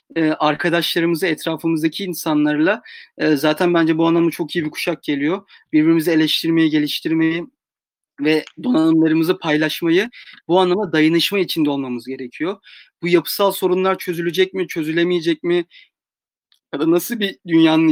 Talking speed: 115 wpm